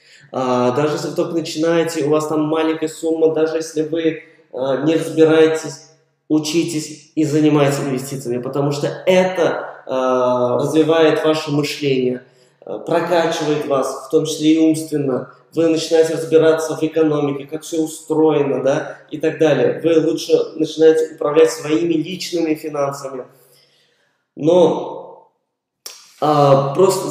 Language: Russian